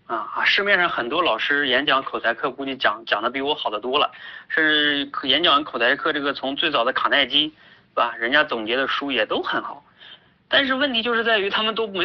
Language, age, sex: Chinese, 30-49, male